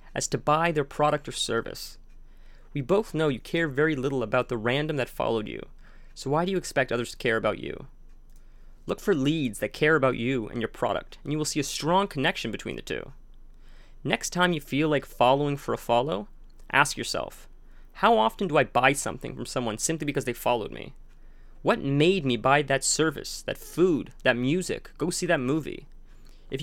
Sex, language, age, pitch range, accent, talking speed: male, English, 30-49, 125-155 Hz, American, 200 wpm